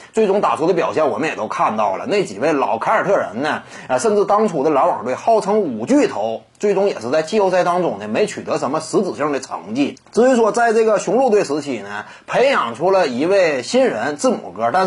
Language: Chinese